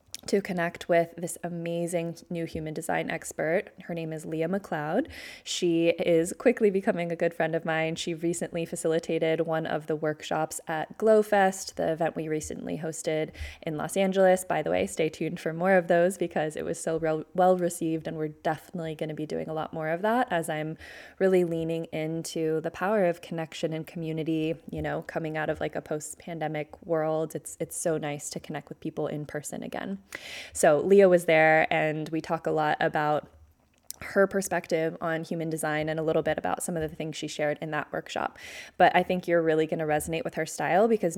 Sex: female